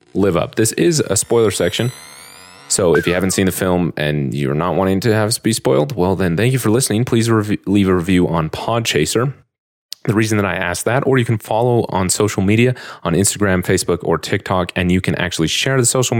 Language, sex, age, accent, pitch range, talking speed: English, male, 30-49, American, 80-105 Hz, 220 wpm